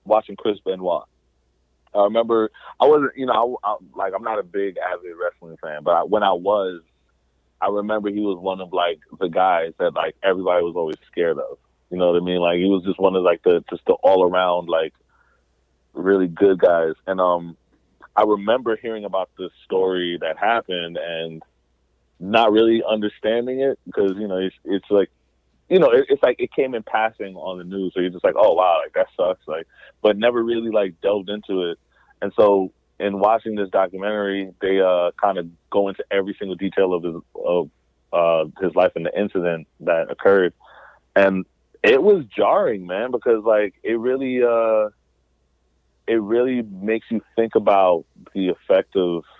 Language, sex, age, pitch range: English, male, 30-49, 85-110 Hz